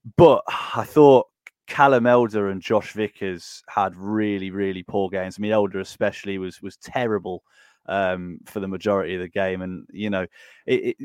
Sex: male